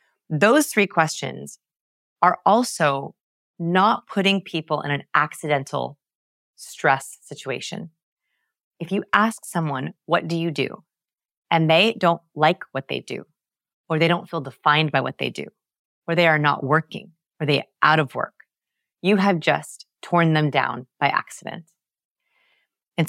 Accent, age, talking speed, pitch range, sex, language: American, 30-49, 150 wpm, 150-195 Hz, female, English